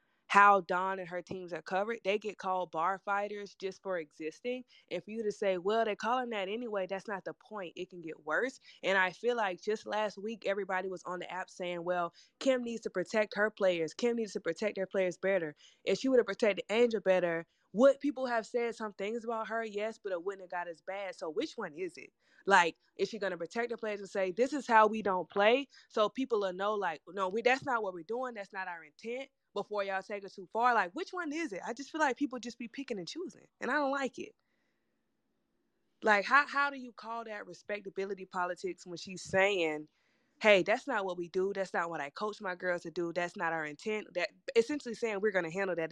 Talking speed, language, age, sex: 240 wpm, English, 20-39, female